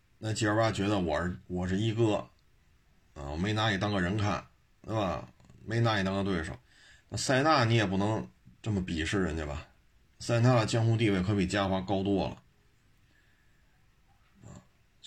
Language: Chinese